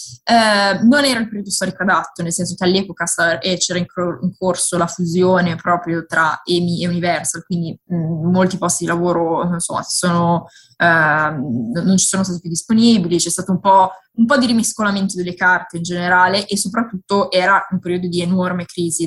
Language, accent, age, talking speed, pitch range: Italian, native, 20-39, 165 wpm, 170-200 Hz